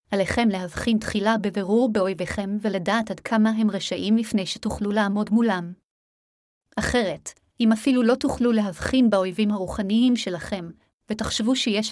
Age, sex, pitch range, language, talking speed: 30-49, female, 195-225 Hz, Hebrew, 125 wpm